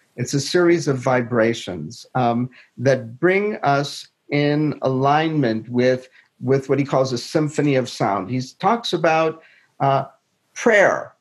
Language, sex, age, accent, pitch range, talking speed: English, male, 50-69, American, 130-170 Hz, 135 wpm